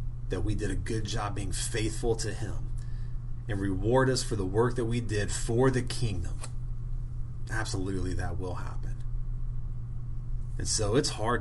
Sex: male